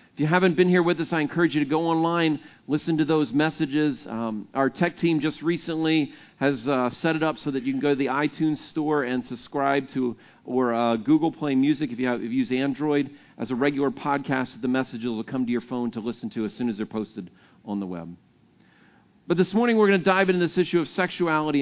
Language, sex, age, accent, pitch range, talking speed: English, male, 50-69, American, 135-170 Hz, 235 wpm